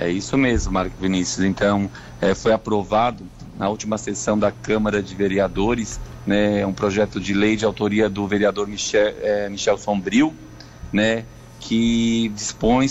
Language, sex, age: Portuguese, male, 40-59